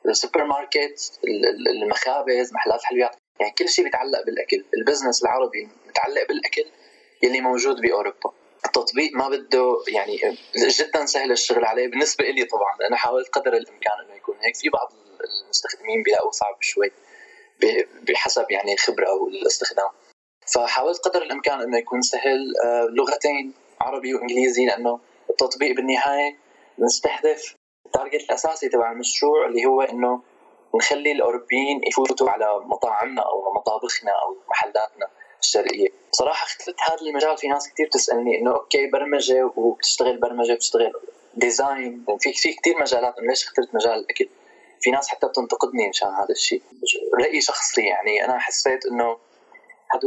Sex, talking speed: male, 135 wpm